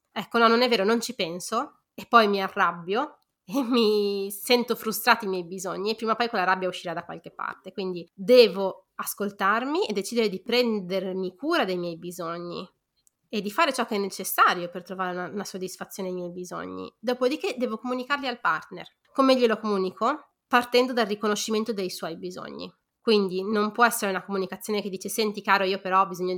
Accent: native